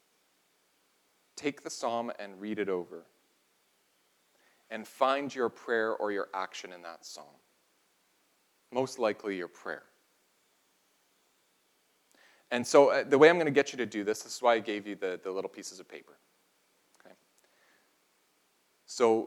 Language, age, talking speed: English, 30-49, 150 wpm